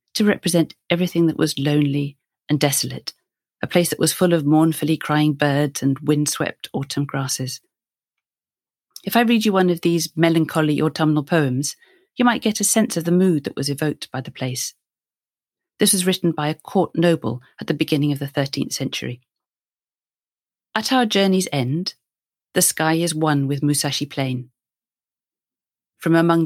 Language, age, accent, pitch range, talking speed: English, 40-59, British, 150-180 Hz, 165 wpm